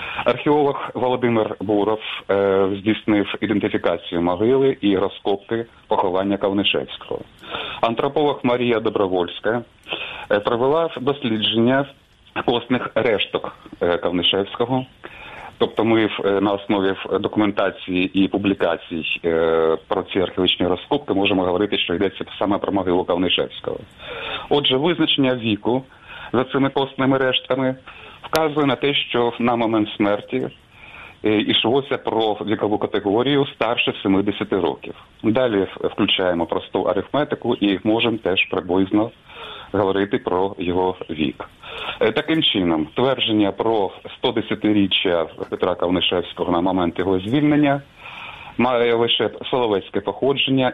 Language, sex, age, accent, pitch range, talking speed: Ukrainian, male, 30-49, native, 100-130 Hz, 100 wpm